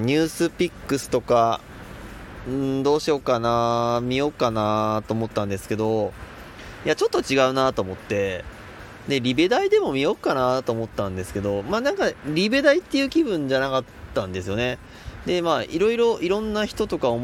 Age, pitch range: 20-39, 105-160 Hz